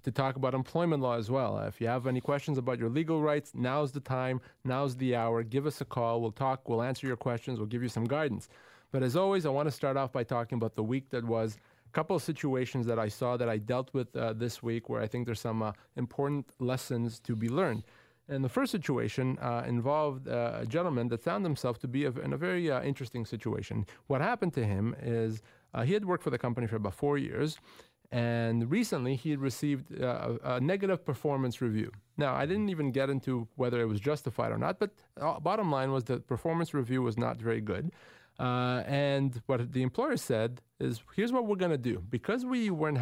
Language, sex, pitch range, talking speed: English, male, 115-145 Hz, 225 wpm